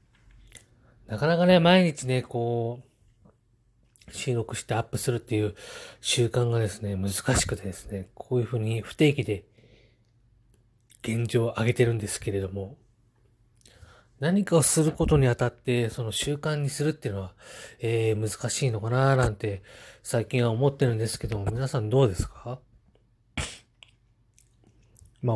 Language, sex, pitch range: Japanese, male, 110-135 Hz